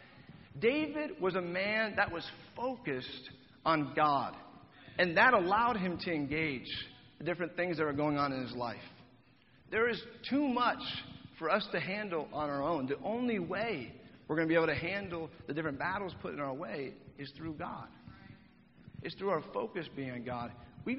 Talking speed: 185 wpm